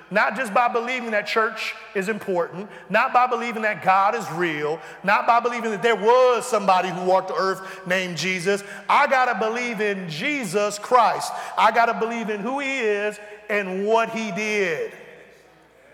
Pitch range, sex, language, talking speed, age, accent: 195-240 Hz, male, English, 170 wpm, 40-59, American